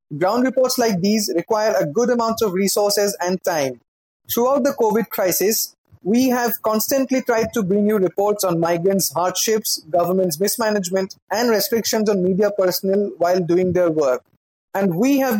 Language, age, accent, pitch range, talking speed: English, 30-49, Indian, 185-225 Hz, 160 wpm